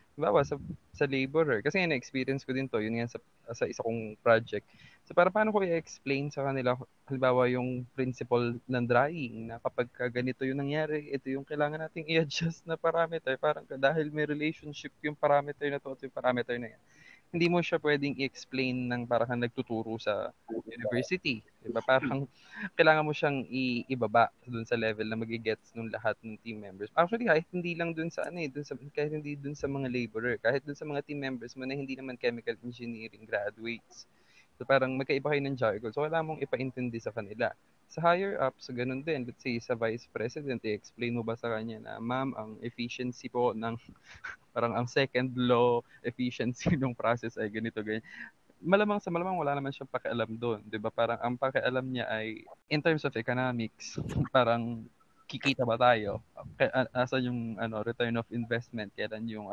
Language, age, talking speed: Filipino, 20-39, 180 wpm